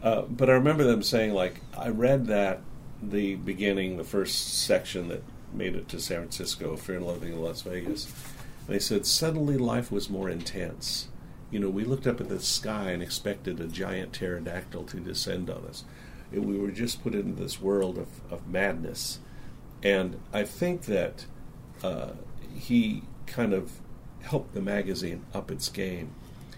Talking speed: 175 wpm